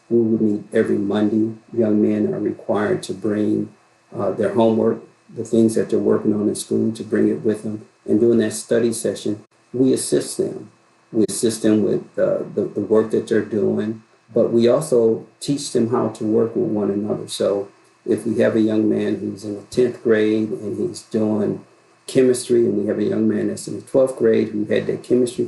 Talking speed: 205 wpm